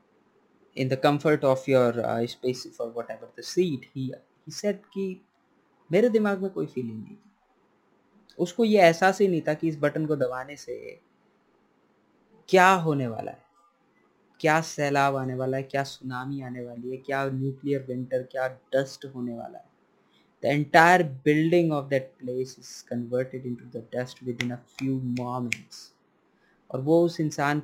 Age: 20-39